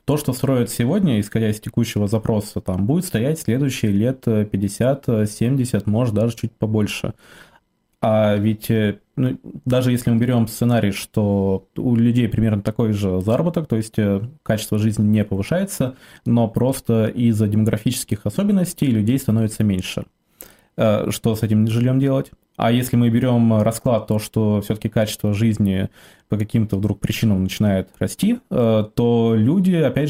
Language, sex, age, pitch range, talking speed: Russian, male, 20-39, 105-125 Hz, 140 wpm